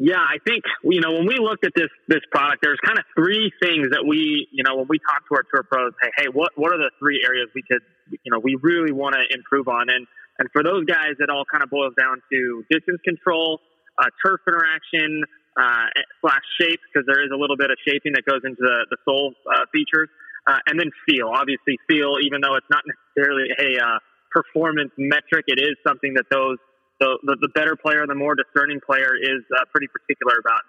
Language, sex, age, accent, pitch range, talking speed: English, male, 20-39, American, 135-160 Hz, 225 wpm